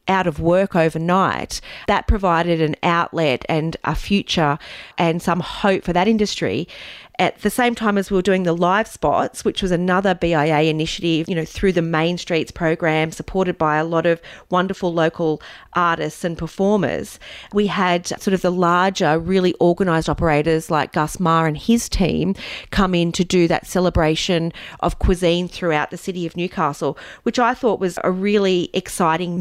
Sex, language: female, English